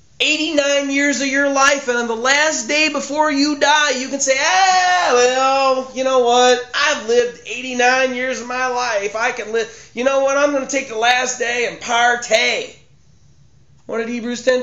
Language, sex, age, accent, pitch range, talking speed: English, male, 30-49, American, 160-260 Hz, 195 wpm